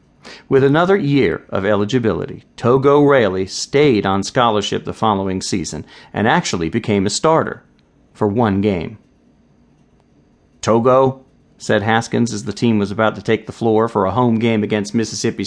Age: 40-59